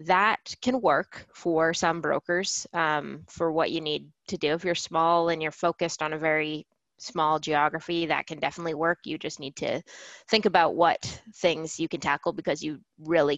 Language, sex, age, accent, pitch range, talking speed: English, female, 20-39, American, 160-185 Hz, 190 wpm